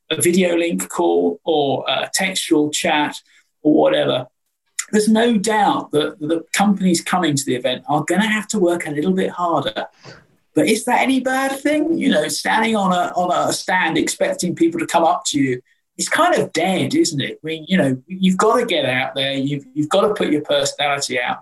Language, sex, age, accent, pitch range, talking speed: English, male, 50-69, British, 140-190 Hz, 210 wpm